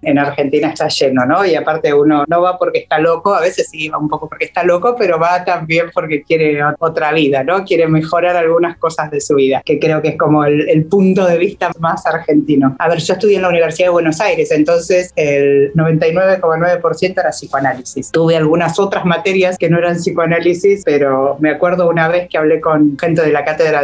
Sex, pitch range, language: female, 150-180 Hz, Spanish